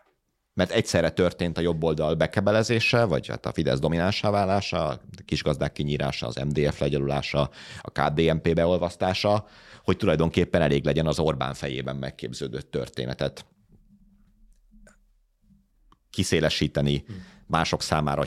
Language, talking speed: Hungarian, 110 wpm